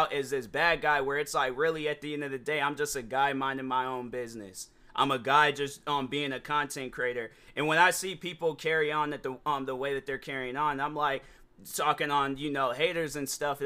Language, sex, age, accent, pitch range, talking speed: English, male, 20-39, American, 140-180 Hz, 250 wpm